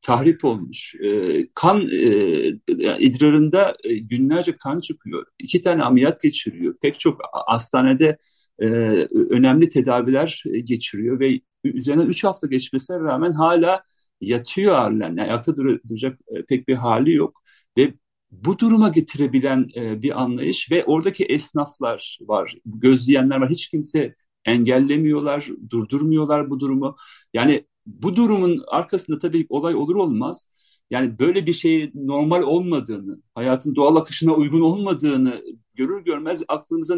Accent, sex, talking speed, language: native, male, 120 wpm, Turkish